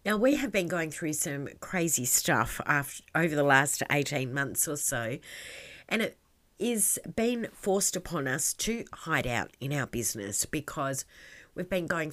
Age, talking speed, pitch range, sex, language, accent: 30-49, 165 wpm, 140-180 Hz, female, English, Australian